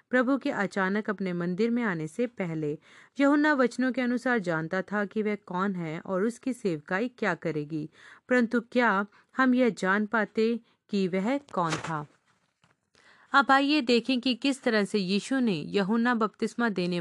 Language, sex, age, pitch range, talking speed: Hindi, female, 40-59, 175-230 Hz, 160 wpm